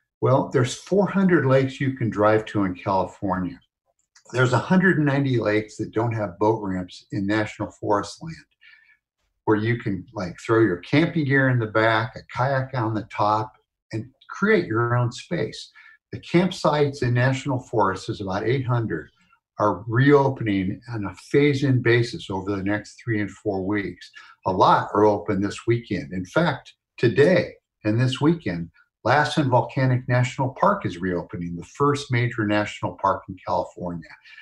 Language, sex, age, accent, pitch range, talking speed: English, male, 60-79, American, 105-140 Hz, 155 wpm